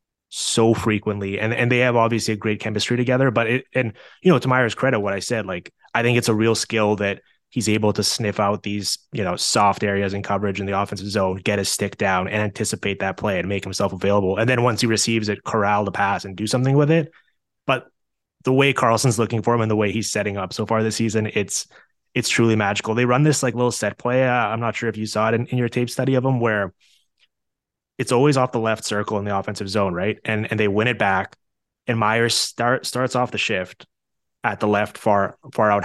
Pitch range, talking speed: 105-120 Hz, 245 wpm